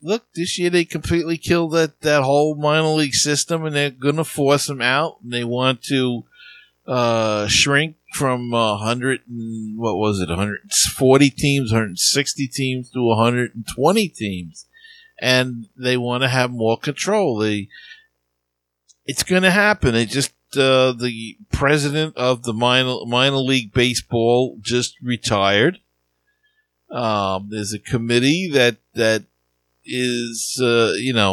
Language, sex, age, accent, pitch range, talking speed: English, male, 50-69, American, 110-145 Hz, 140 wpm